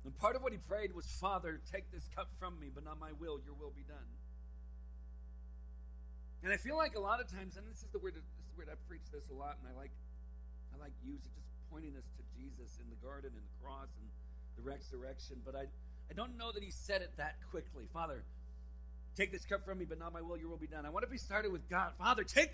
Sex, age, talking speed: male, 50-69, 260 wpm